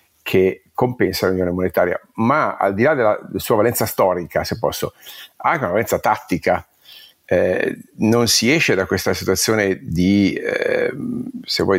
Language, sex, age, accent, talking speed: Italian, male, 50-69, native, 135 wpm